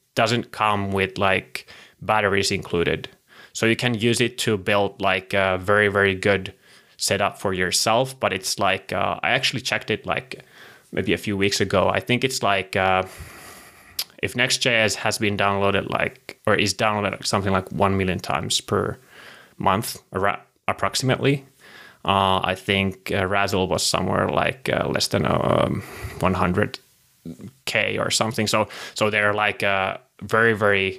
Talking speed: 160 wpm